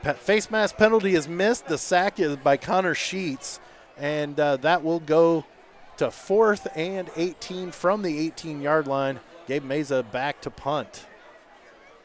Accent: American